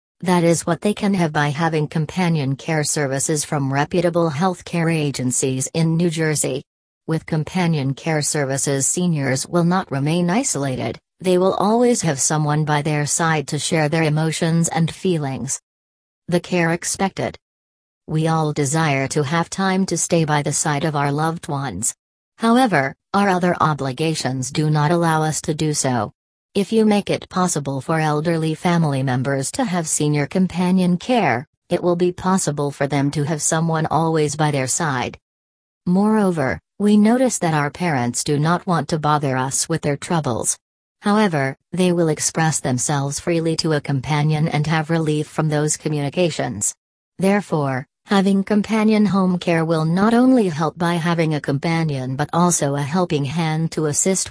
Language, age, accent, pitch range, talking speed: English, 40-59, American, 145-175 Hz, 165 wpm